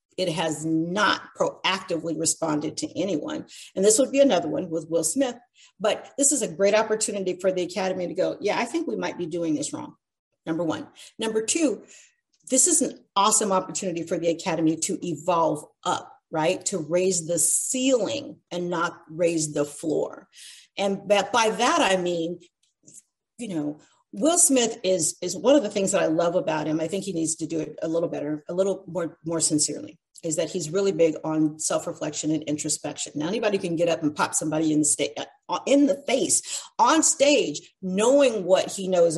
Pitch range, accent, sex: 165-235 Hz, American, female